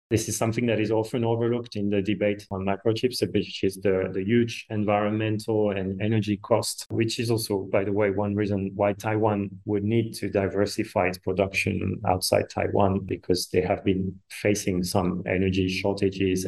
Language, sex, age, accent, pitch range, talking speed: English, male, 30-49, French, 100-115 Hz, 170 wpm